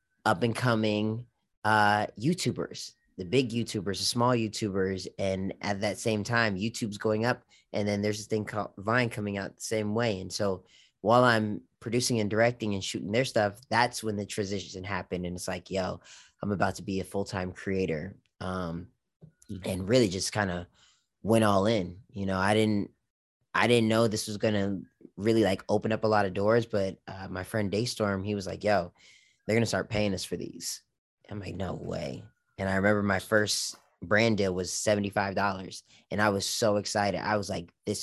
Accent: American